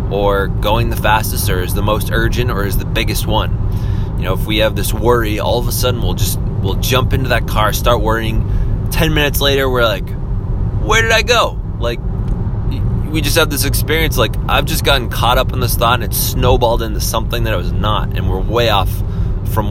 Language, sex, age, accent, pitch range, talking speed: English, male, 20-39, American, 95-110 Hz, 220 wpm